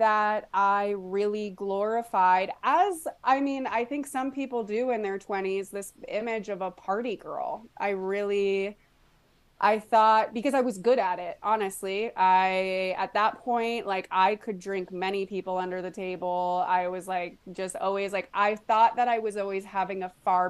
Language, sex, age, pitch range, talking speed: English, female, 20-39, 185-220 Hz, 175 wpm